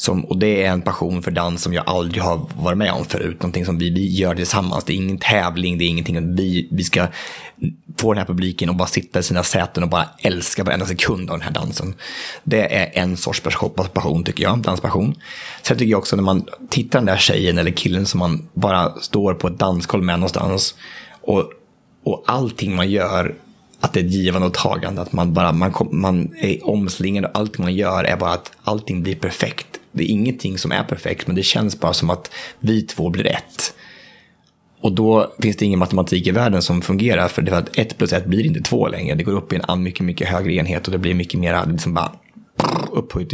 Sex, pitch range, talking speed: male, 90-100 Hz, 230 wpm